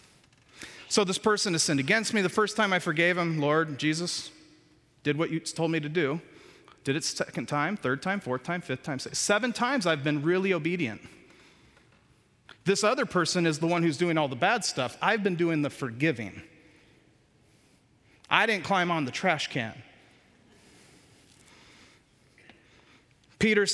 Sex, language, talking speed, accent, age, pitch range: male, English, 160 wpm, American, 40-59, 160-215 Hz